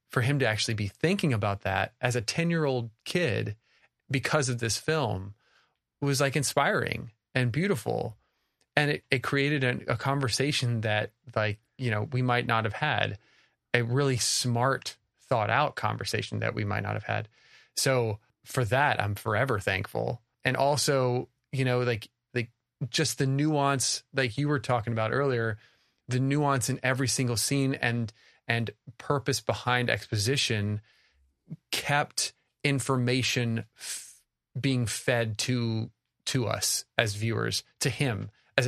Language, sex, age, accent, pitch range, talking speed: English, male, 20-39, American, 115-135 Hz, 150 wpm